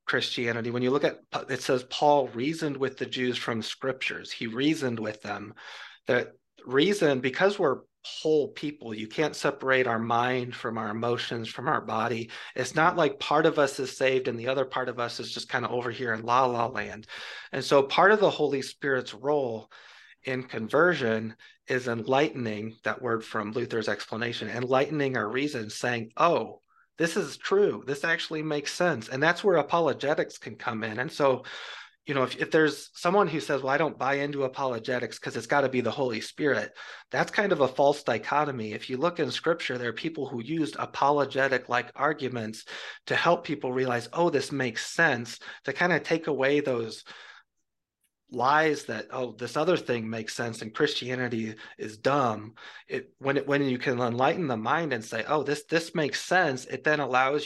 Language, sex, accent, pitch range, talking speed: English, male, American, 120-145 Hz, 190 wpm